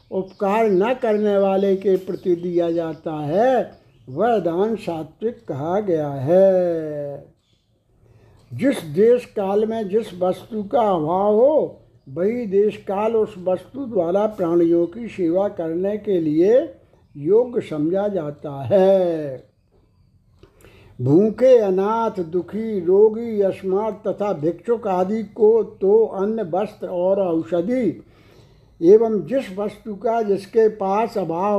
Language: Hindi